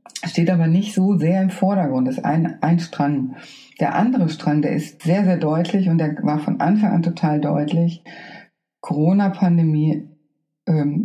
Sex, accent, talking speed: female, German, 160 wpm